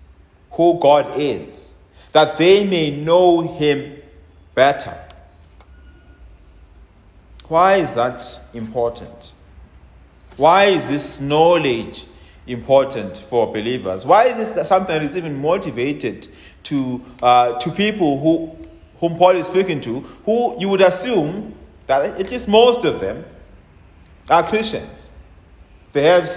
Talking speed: 120 wpm